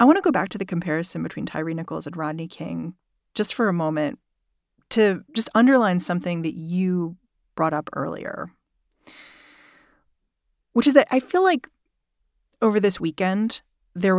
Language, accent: English, American